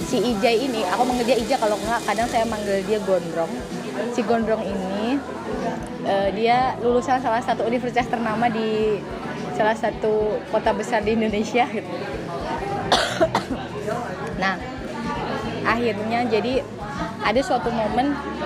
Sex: female